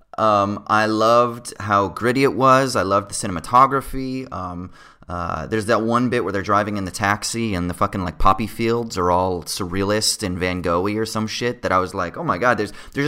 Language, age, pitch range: English, 30-49, 100-130 Hz